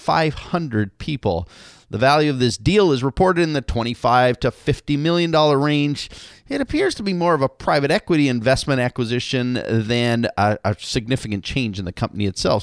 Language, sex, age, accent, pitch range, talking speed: English, male, 30-49, American, 115-170 Hz, 175 wpm